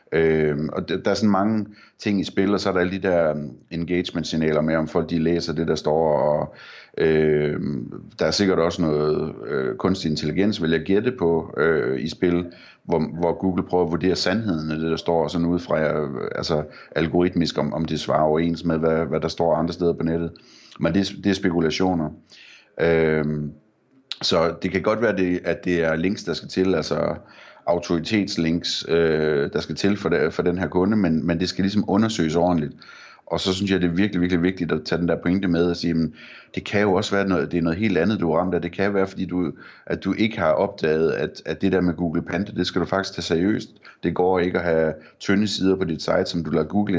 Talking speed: 225 wpm